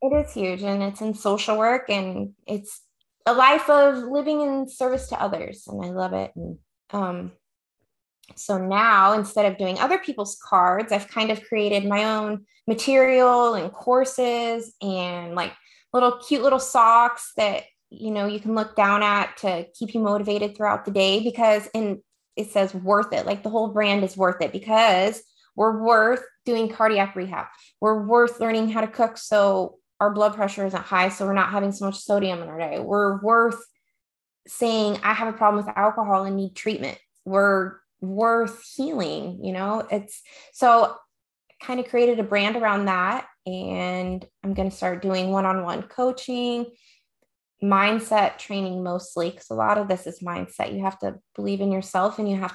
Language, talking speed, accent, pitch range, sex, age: English, 175 wpm, American, 190-230 Hz, female, 20-39